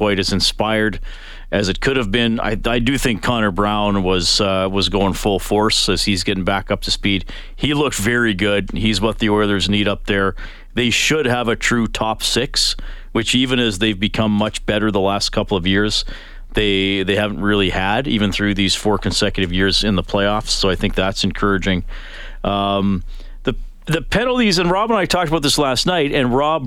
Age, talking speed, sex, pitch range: 40-59, 205 wpm, male, 95-120 Hz